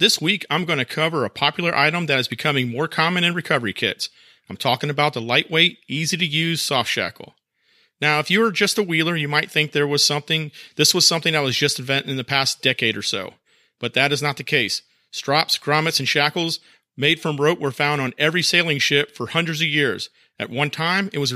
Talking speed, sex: 225 wpm, male